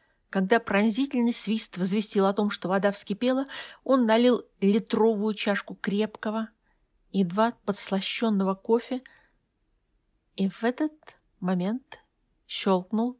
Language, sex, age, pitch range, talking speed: Russian, female, 50-69, 195-260 Hz, 100 wpm